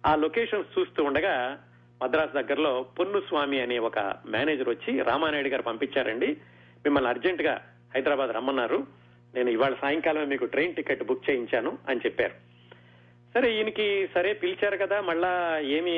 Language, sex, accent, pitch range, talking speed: Telugu, male, native, 120-155 Hz, 140 wpm